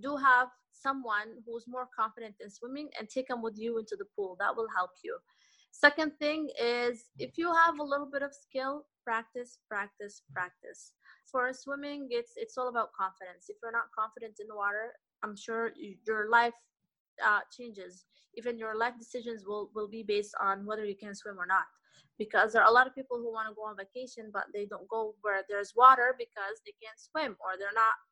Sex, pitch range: female, 210-255 Hz